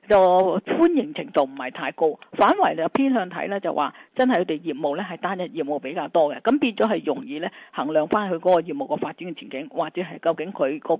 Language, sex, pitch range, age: Chinese, female, 170-240 Hz, 50-69